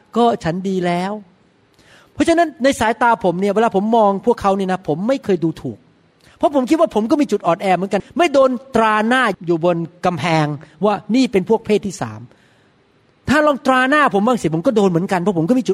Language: Thai